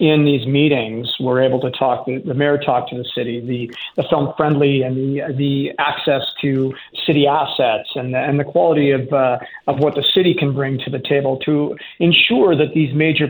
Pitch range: 135-155 Hz